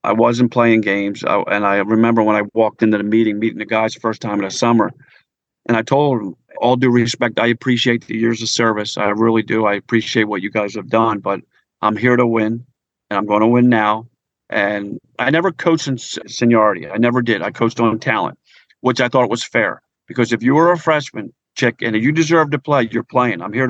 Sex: male